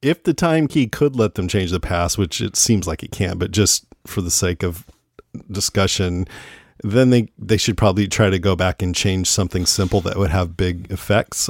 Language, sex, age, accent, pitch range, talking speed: English, male, 40-59, American, 90-110 Hz, 215 wpm